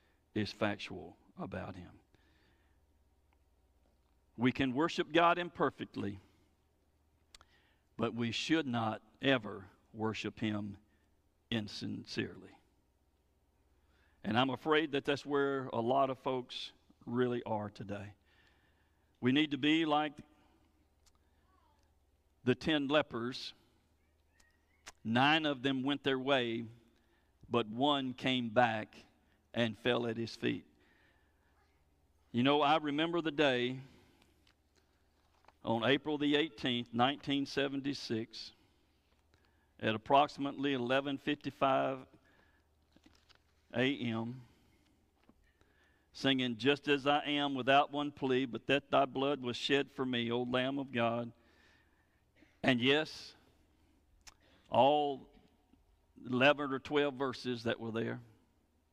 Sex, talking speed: male, 100 wpm